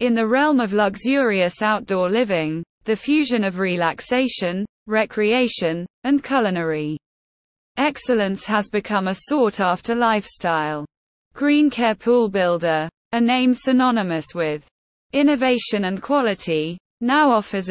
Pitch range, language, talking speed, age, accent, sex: 180-245 Hz, English, 110 wpm, 20-39, British, female